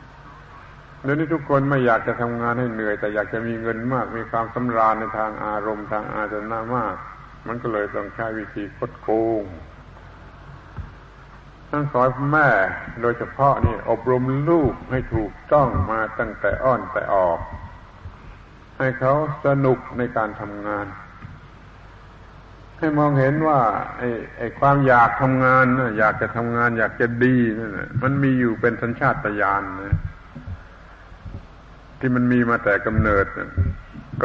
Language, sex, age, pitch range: Thai, male, 70-89, 105-130 Hz